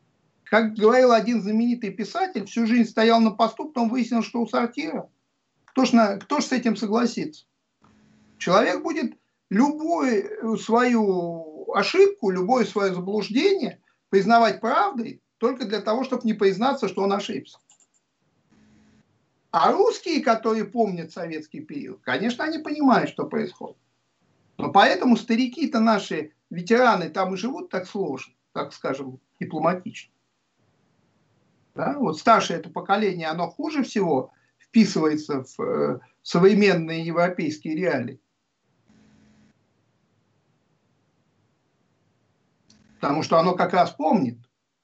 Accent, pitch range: native, 180-235 Hz